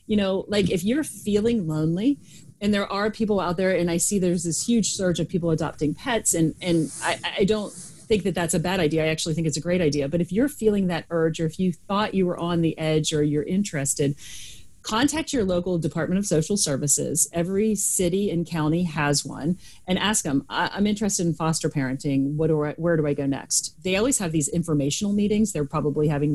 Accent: American